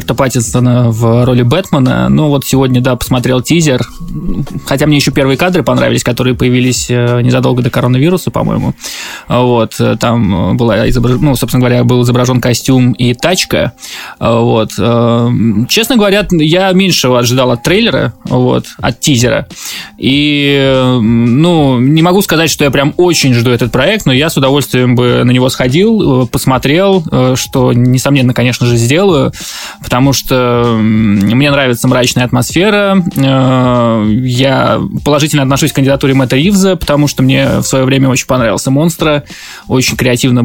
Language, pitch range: Russian, 125-145 Hz